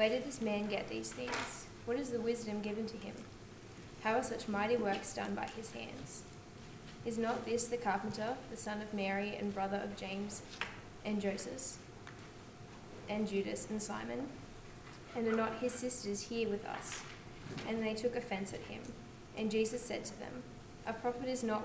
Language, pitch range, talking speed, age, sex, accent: English, 165-225 Hz, 180 wpm, 10-29, female, Australian